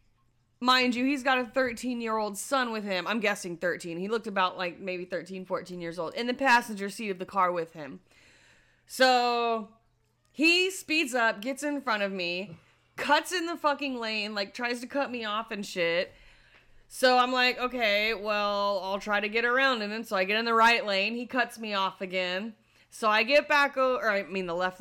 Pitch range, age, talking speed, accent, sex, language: 200-260 Hz, 30-49, 205 wpm, American, female, English